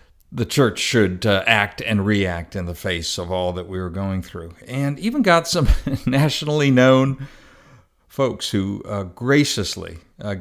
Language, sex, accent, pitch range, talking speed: English, male, American, 90-115 Hz, 160 wpm